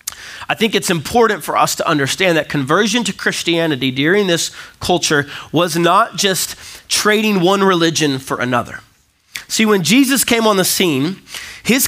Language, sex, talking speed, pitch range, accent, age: English, male, 155 wpm, 145-210 Hz, American, 30-49